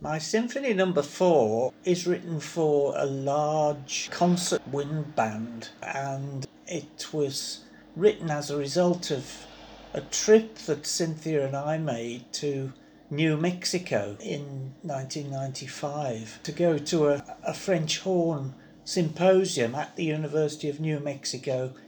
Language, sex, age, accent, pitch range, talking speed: English, male, 60-79, British, 135-165 Hz, 130 wpm